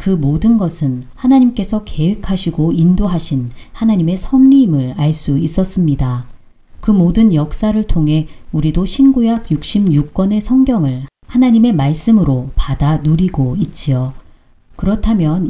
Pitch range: 145-215 Hz